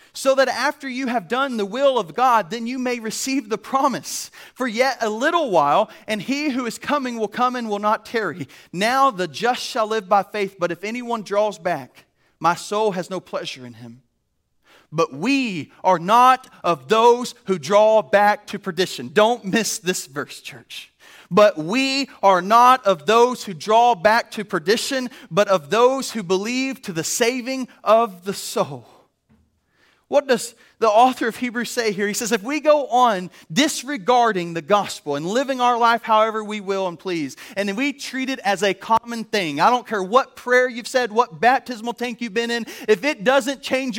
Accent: American